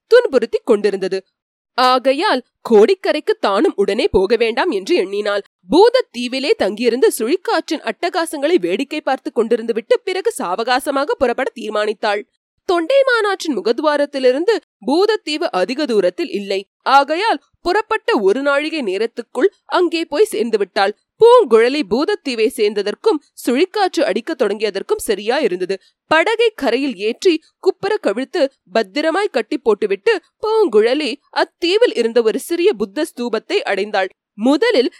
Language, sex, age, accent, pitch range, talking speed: Tamil, female, 20-39, native, 235-395 Hz, 105 wpm